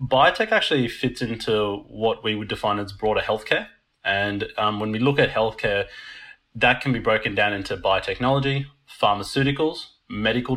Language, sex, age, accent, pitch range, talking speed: English, male, 30-49, Australian, 105-135 Hz, 155 wpm